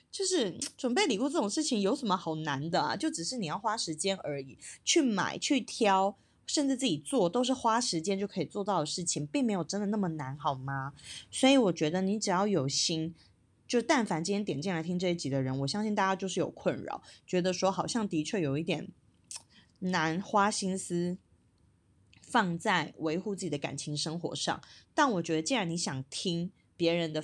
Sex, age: female, 20-39